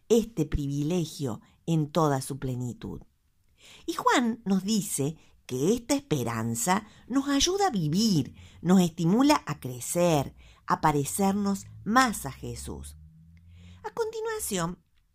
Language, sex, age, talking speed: Spanish, female, 50-69, 110 wpm